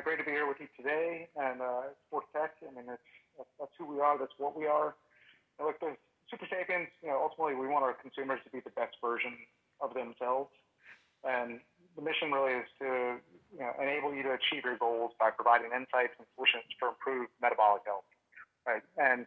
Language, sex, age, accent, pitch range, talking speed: English, male, 30-49, American, 120-140 Hz, 205 wpm